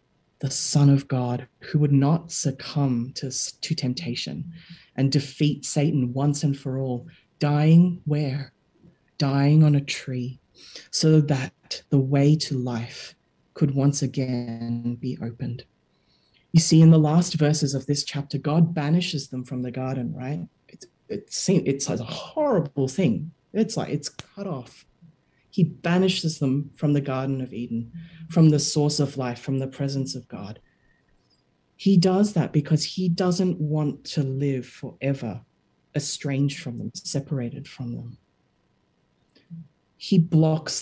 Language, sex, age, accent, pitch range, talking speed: English, female, 30-49, Australian, 130-160 Hz, 145 wpm